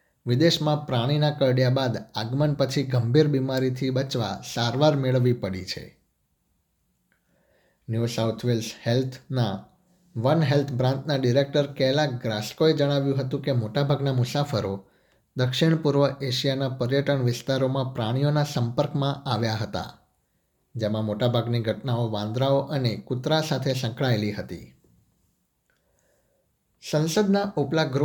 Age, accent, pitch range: 60-79, native, 120-140 Hz